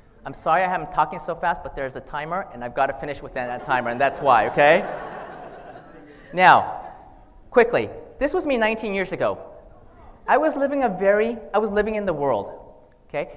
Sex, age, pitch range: male, 30-49, 145-205 Hz